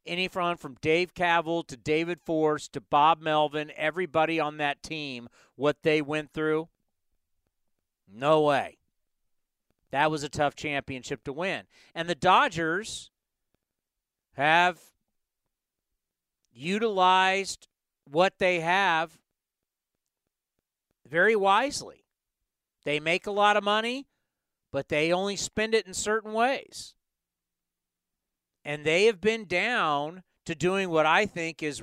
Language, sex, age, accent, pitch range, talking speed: English, male, 50-69, American, 145-175 Hz, 120 wpm